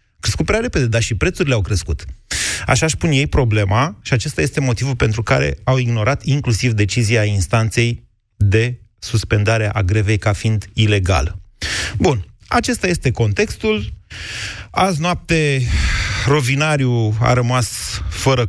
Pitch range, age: 105-125 Hz, 30-49